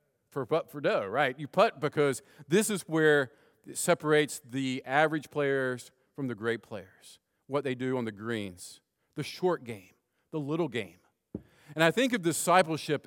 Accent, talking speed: American, 170 wpm